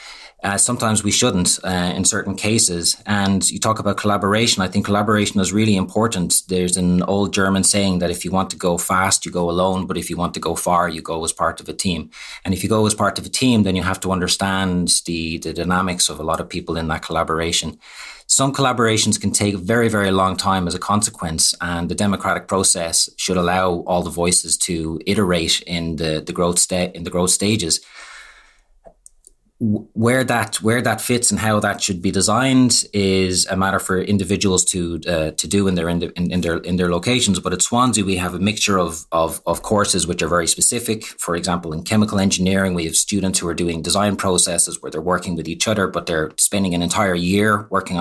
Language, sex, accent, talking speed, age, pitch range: English, male, Irish, 220 wpm, 30-49, 85-100 Hz